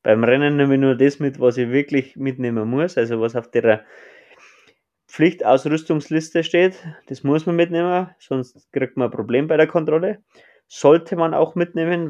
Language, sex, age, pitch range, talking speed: German, male, 20-39, 125-160 Hz, 170 wpm